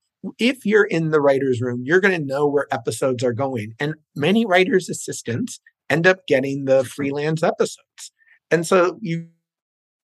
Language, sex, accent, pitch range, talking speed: English, male, American, 130-185 Hz, 160 wpm